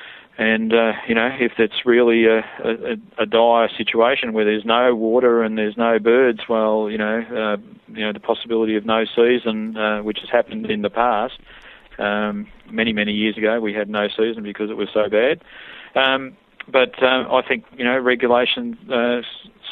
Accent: Australian